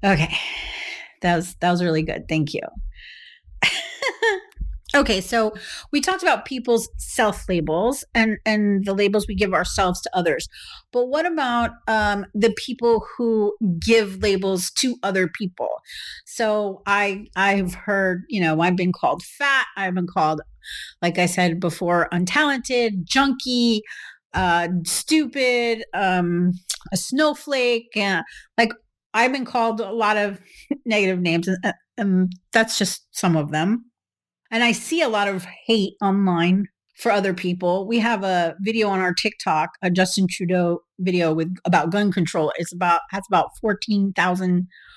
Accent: American